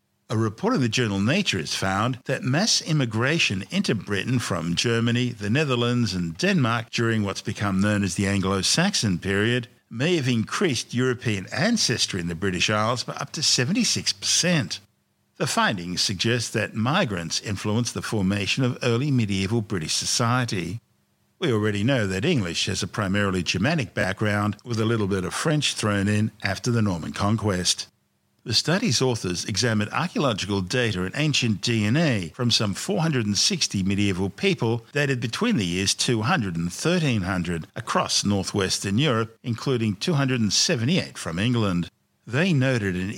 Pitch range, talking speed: 100-125 Hz, 145 wpm